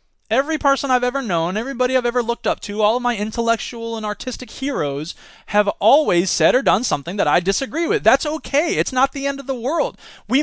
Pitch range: 160-245 Hz